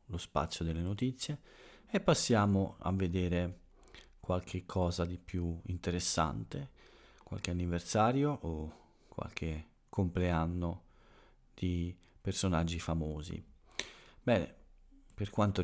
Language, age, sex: Italian, 40-59, male